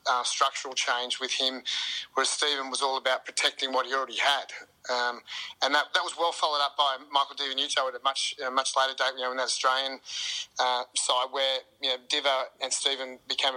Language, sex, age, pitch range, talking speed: English, male, 30-49, 130-145 Hz, 210 wpm